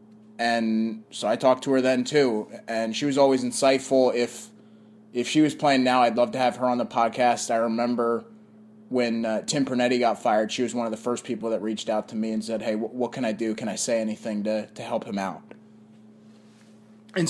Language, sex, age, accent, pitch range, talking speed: English, male, 20-39, American, 120-150 Hz, 225 wpm